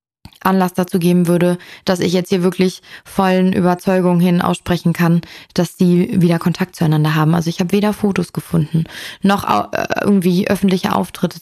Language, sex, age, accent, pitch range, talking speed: German, female, 20-39, German, 175-210 Hz, 160 wpm